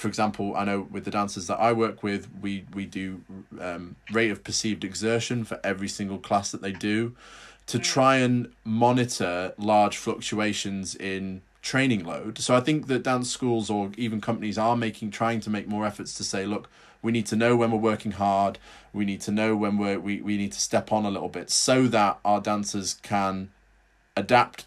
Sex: male